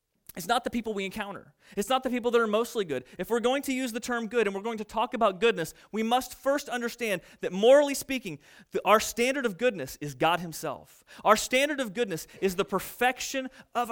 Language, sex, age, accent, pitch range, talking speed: English, male, 30-49, American, 190-245 Hz, 220 wpm